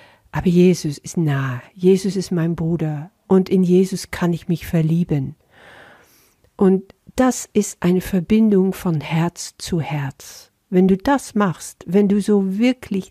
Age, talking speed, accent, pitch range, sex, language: 50-69, 145 wpm, German, 165-205 Hz, female, German